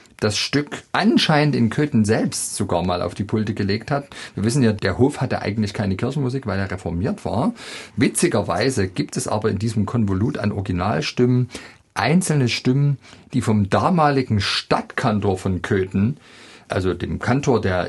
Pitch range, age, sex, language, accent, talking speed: 100-130 Hz, 40-59, male, German, German, 160 wpm